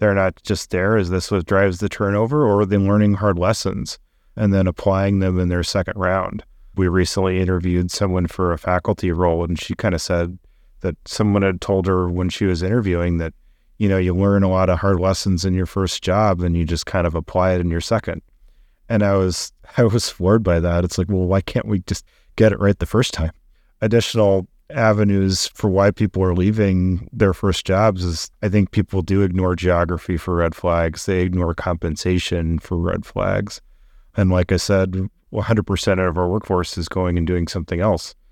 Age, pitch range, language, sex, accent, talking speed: 30-49, 85-100 Hz, English, male, American, 205 wpm